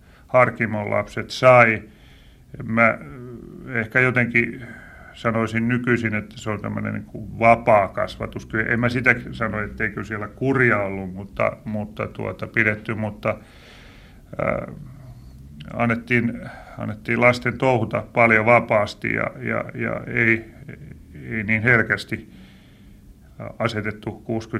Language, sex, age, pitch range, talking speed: Finnish, male, 30-49, 105-120 Hz, 110 wpm